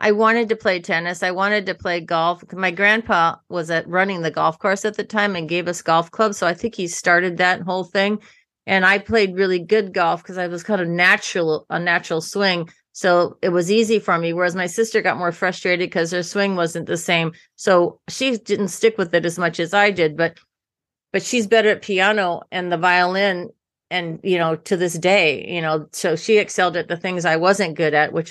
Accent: American